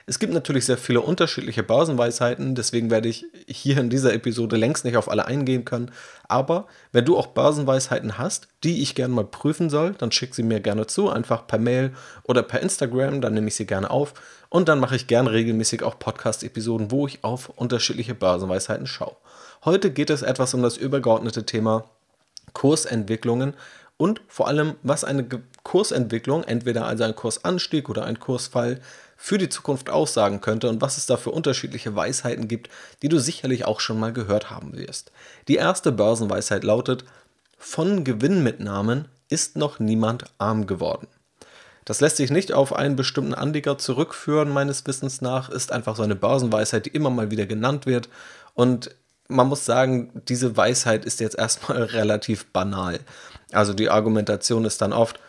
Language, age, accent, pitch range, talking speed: German, 30-49, German, 110-140 Hz, 175 wpm